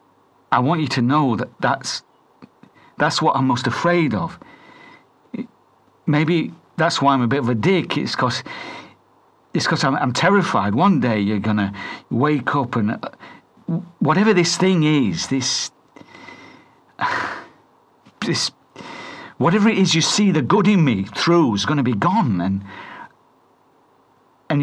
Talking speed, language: 150 wpm, English